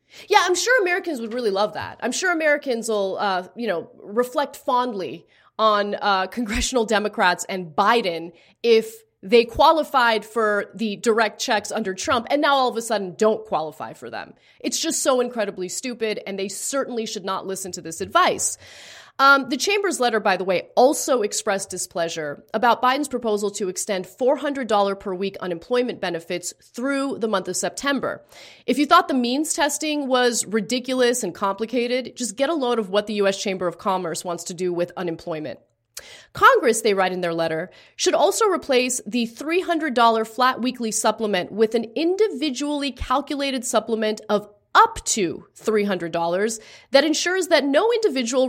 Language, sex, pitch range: English, female, 200-280 Hz